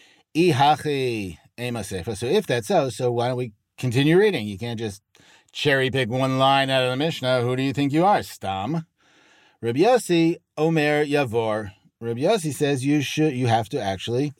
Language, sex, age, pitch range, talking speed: English, male, 40-59, 110-155 Hz, 170 wpm